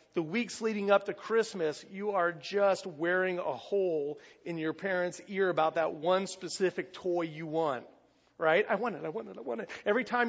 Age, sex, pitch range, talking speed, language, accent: 40-59, male, 160-210 Hz, 205 wpm, English, American